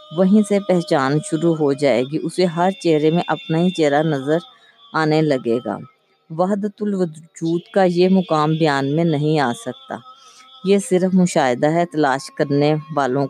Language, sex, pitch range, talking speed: Urdu, female, 150-180 Hz, 160 wpm